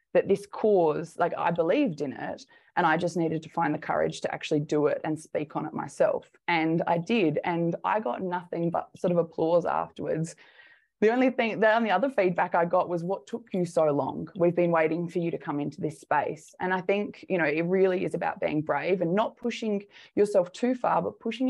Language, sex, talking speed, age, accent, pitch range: English, female, 225 wpm, 20-39, Australian, 160-205 Hz